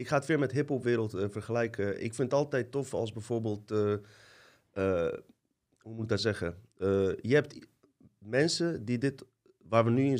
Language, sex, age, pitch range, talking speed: Dutch, male, 30-49, 100-120 Hz, 180 wpm